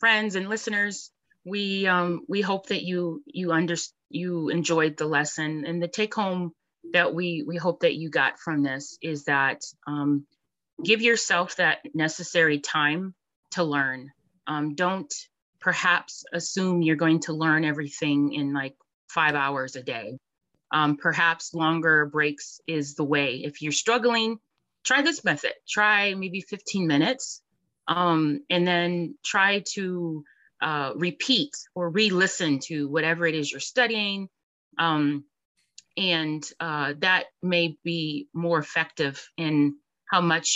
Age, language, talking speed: 30-49, English, 140 wpm